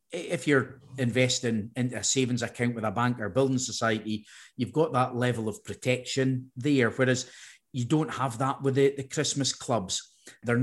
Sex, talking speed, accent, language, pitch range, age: male, 175 wpm, British, English, 110-130 Hz, 40-59